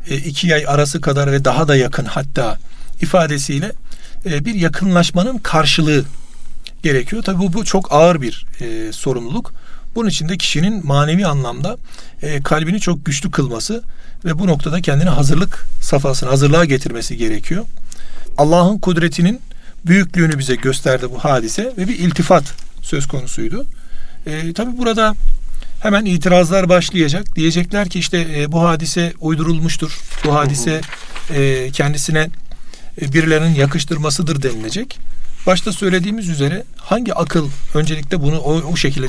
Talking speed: 125 wpm